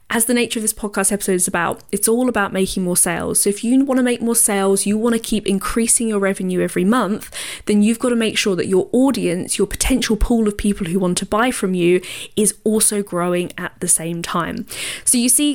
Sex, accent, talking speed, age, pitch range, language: female, British, 230 wpm, 10-29, 185-235 Hz, English